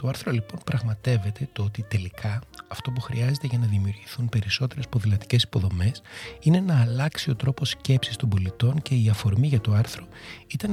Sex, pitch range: male, 105-140 Hz